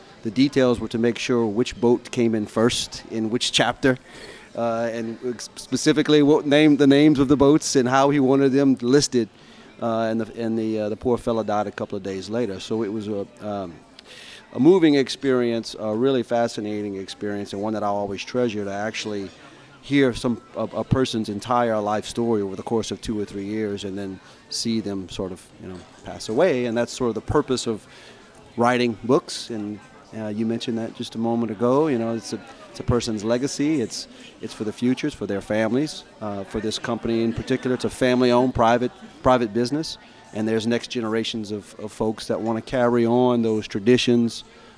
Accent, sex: American, male